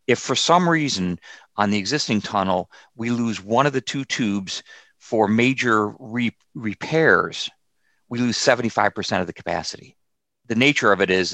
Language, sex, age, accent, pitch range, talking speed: English, male, 40-59, American, 100-130 Hz, 155 wpm